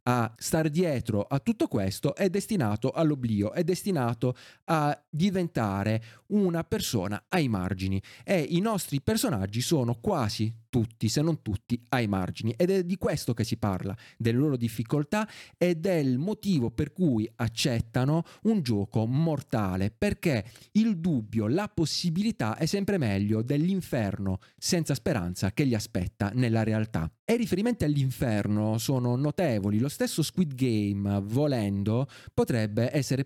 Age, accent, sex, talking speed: 30-49, native, male, 140 wpm